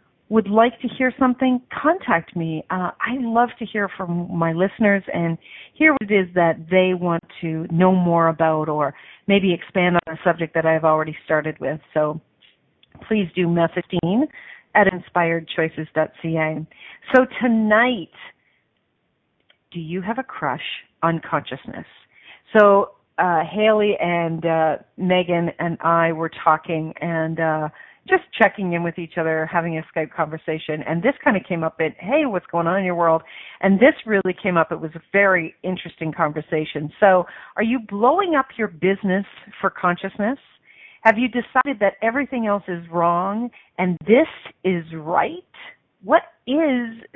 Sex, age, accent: female, 40-59, American